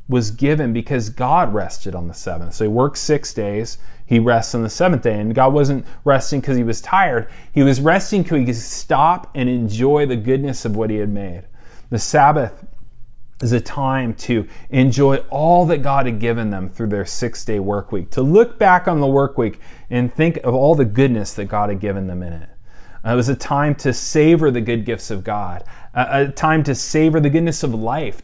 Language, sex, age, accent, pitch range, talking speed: English, male, 30-49, American, 110-140 Hz, 220 wpm